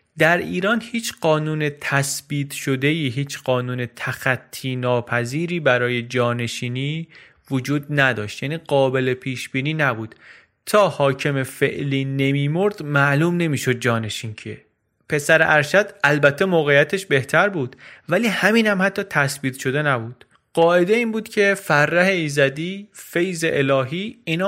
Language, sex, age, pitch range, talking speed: Persian, male, 30-49, 130-165 Hz, 125 wpm